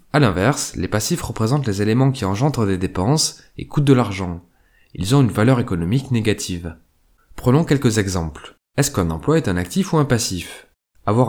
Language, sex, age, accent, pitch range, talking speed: French, male, 20-39, French, 90-125 Hz, 180 wpm